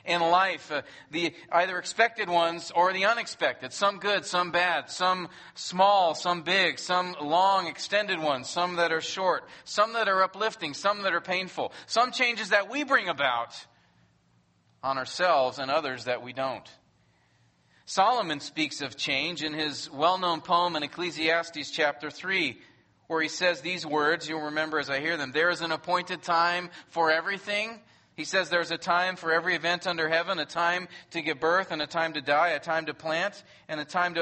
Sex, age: male, 40-59